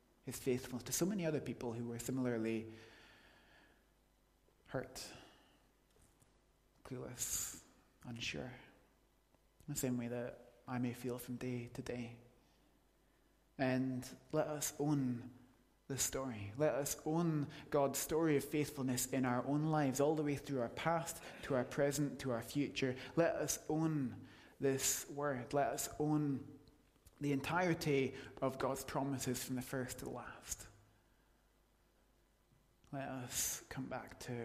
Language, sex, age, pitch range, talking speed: English, male, 20-39, 115-140 Hz, 135 wpm